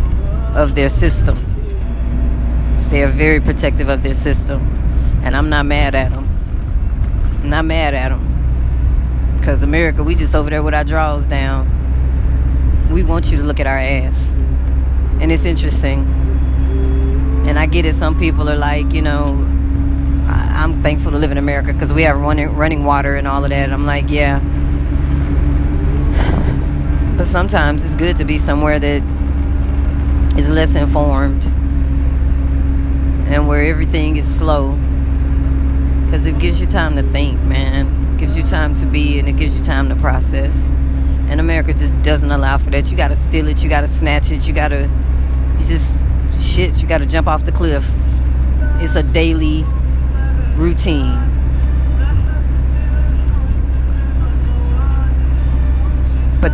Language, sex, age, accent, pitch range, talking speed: English, female, 20-39, American, 65-70 Hz, 145 wpm